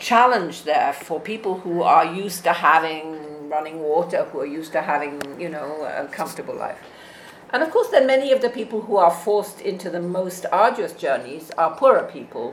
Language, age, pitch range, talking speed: English, 50-69, 150-190 Hz, 190 wpm